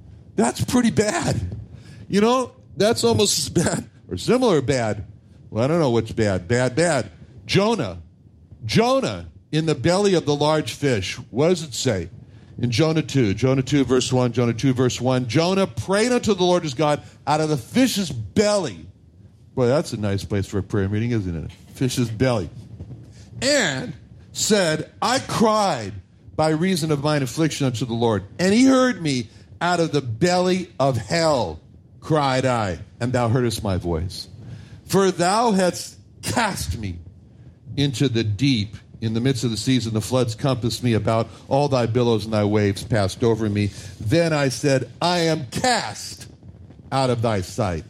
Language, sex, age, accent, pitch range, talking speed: English, male, 60-79, American, 110-155 Hz, 170 wpm